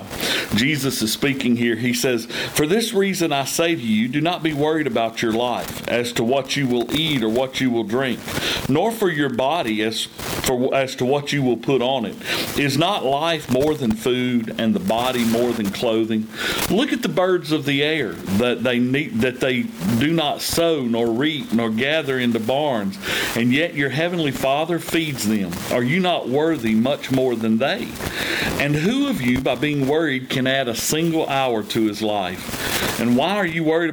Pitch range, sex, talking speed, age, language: 115-160 Hz, male, 200 wpm, 50-69, English